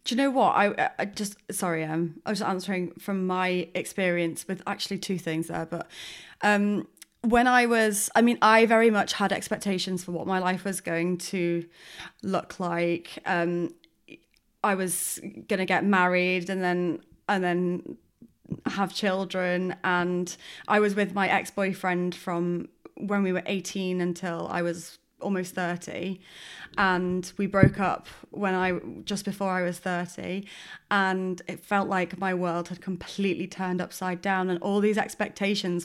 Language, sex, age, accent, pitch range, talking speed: English, female, 20-39, British, 180-205 Hz, 165 wpm